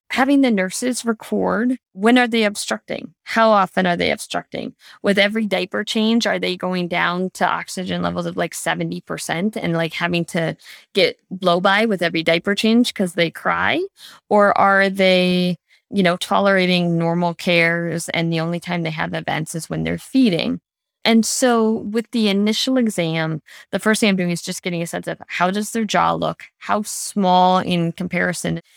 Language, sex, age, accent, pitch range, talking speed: English, female, 20-39, American, 180-235 Hz, 180 wpm